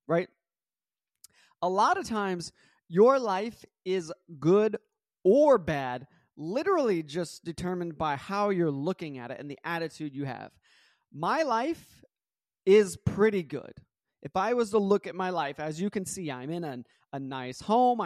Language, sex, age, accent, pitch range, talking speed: English, male, 30-49, American, 145-205 Hz, 160 wpm